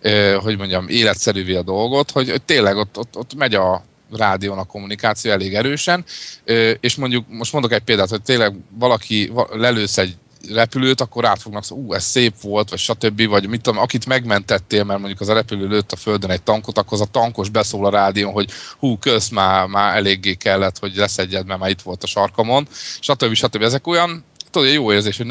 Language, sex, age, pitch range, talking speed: Hungarian, male, 30-49, 95-120 Hz, 200 wpm